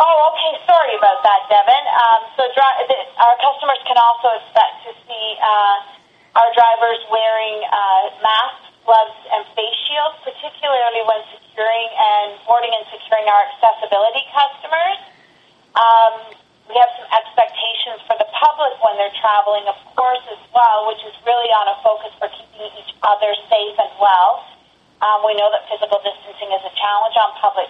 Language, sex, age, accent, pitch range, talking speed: English, female, 30-49, American, 200-240 Hz, 160 wpm